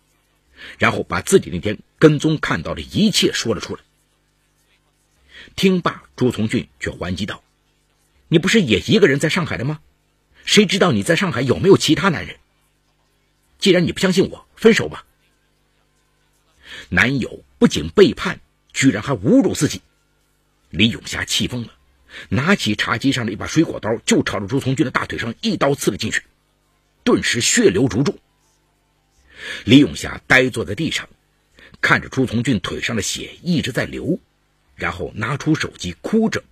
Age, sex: 50-69, male